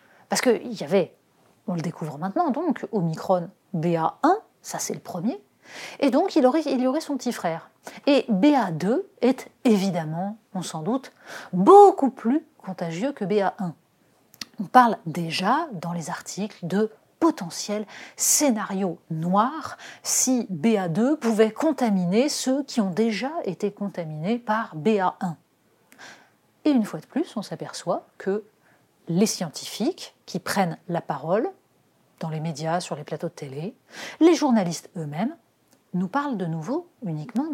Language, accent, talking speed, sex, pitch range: French, French, 140 wpm, female, 175-255 Hz